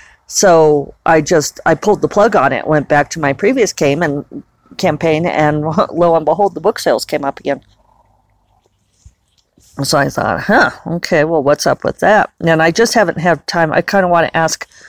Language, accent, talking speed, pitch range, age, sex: English, American, 190 wpm, 145-185 Hz, 40-59, female